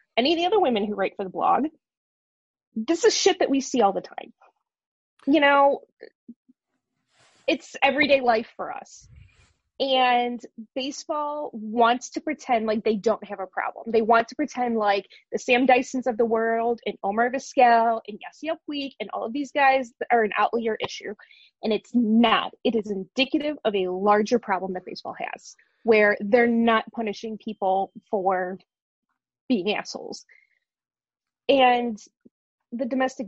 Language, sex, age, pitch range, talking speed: English, female, 20-39, 220-285 Hz, 155 wpm